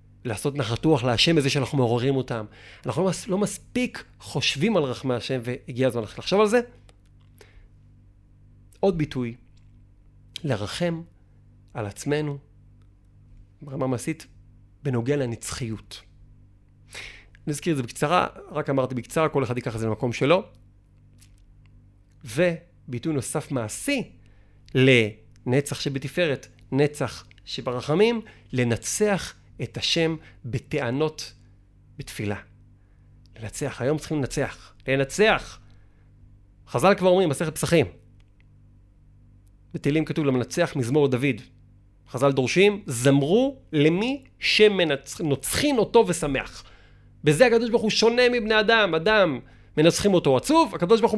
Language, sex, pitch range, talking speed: Hebrew, male, 105-150 Hz, 100 wpm